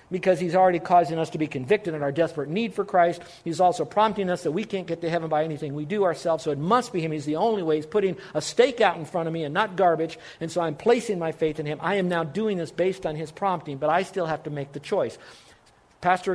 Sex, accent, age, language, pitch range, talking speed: male, American, 50-69, English, 145-185 Hz, 280 wpm